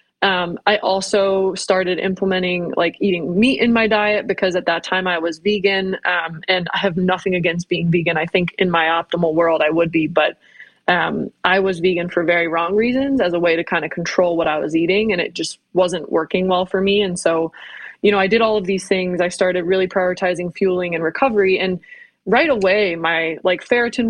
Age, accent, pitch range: 20-39, American, 180-210 Hz